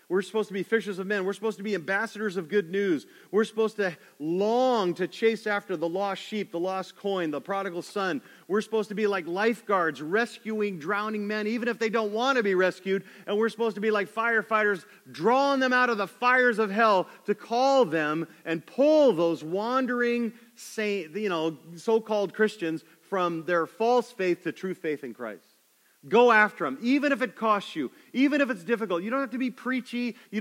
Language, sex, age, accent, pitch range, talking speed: English, male, 40-59, American, 190-230 Hz, 205 wpm